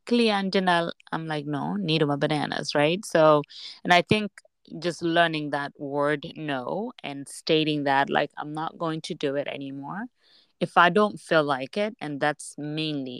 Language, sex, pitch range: English, female, 140-165 Hz